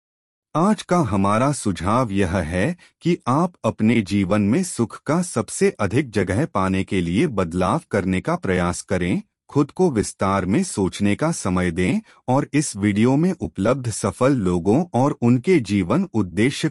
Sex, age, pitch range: male, 30-49, 95-145 Hz